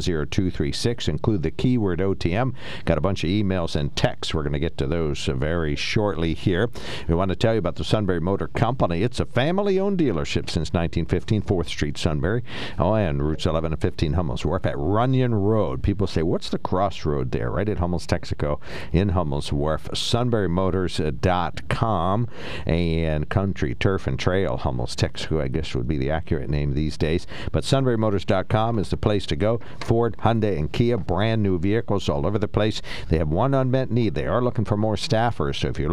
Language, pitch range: English, 80-110 Hz